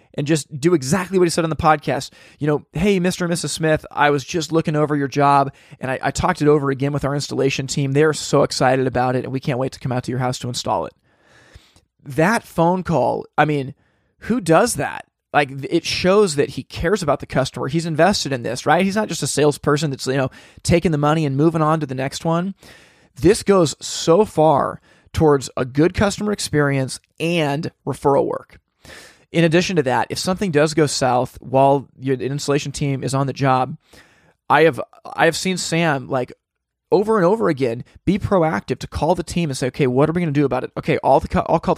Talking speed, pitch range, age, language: 225 wpm, 135-165 Hz, 20-39, English